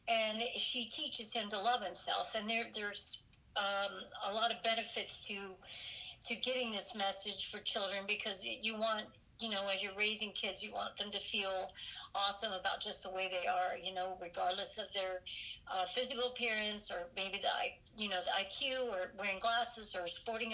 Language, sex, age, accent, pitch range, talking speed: English, female, 60-79, American, 190-230 Hz, 185 wpm